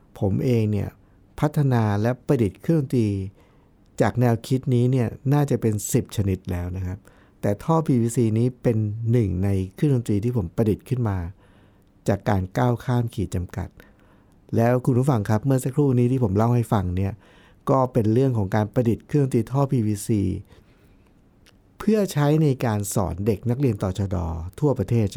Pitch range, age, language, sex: 100-125 Hz, 60-79, Thai, male